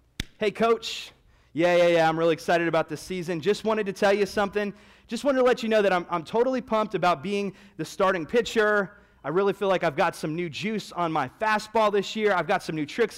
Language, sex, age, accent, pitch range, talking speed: English, male, 30-49, American, 150-205 Hz, 235 wpm